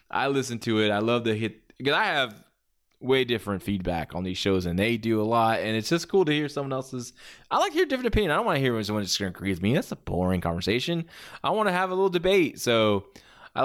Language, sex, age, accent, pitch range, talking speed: English, male, 20-39, American, 100-140 Hz, 275 wpm